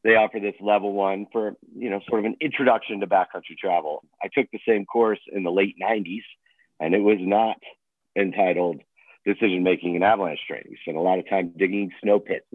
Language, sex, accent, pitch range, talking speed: English, male, American, 95-120 Hz, 200 wpm